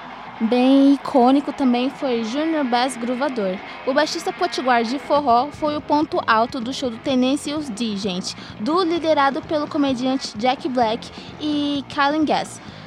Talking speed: 145 wpm